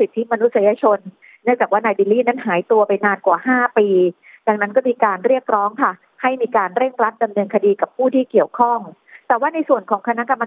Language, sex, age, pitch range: Thai, female, 30-49, 200-250 Hz